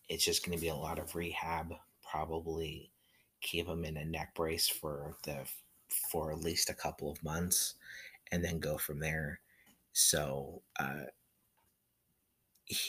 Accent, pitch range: American, 80-90 Hz